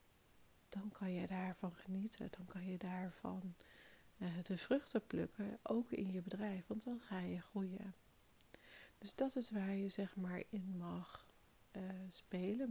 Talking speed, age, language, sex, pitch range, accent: 155 wpm, 40-59, Dutch, female, 180-210 Hz, Dutch